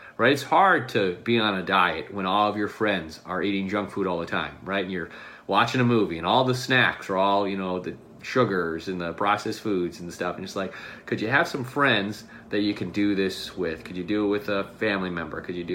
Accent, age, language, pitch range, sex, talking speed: American, 30-49, English, 100-135 Hz, male, 255 wpm